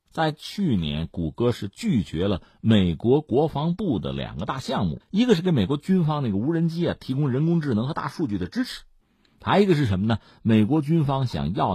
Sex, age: male, 50-69